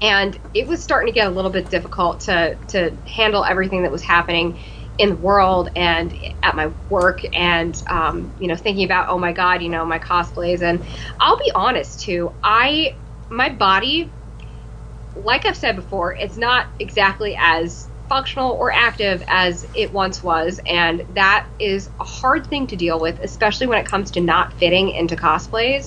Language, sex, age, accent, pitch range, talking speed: English, female, 20-39, American, 175-235 Hz, 180 wpm